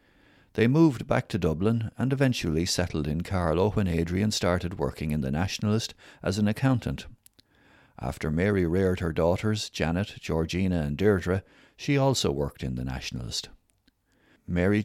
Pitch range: 80-105 Hz